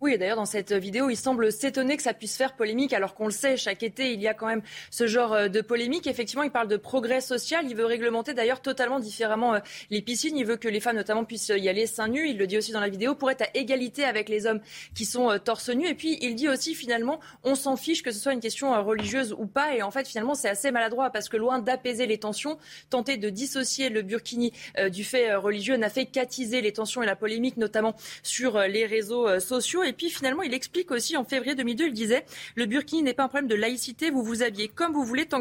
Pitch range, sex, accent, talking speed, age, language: 220-270 Hz, female, French, 255 wpm, 20-39, French